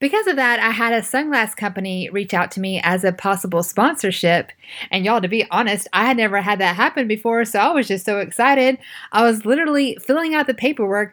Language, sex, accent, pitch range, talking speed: English, female, American, 190-245 Hz, 220 wpm